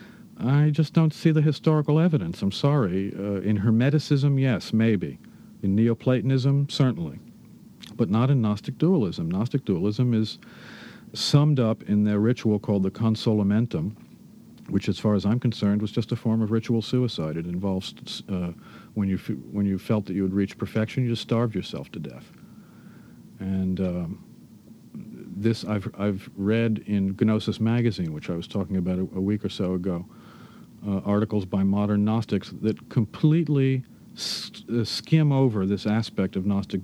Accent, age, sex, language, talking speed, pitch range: American, 50-69, male, English, 165 wpm, 100-120 Hz